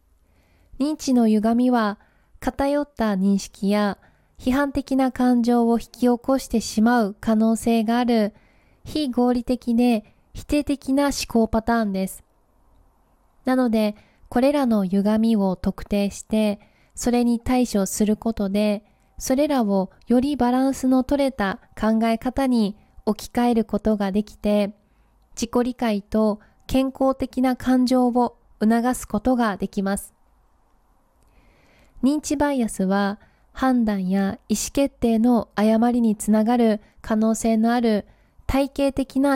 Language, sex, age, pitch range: Japanese, female, 20-39, 210-250 Hz